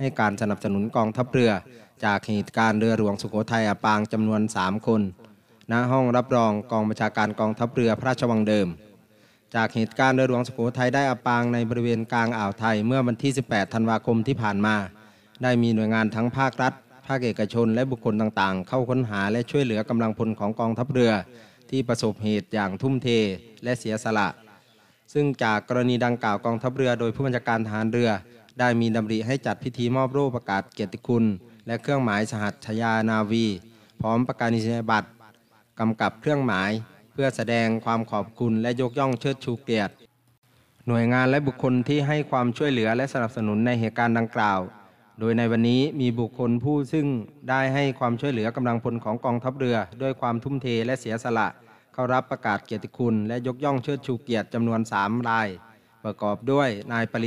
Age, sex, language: 20-39, male, Thai